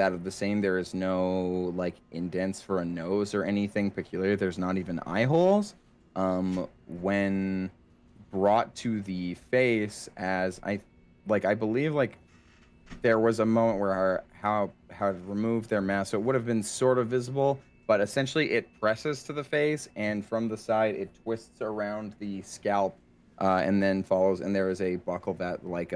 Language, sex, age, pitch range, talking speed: English, male, 30-49, 90-110 Hz, 180 wpm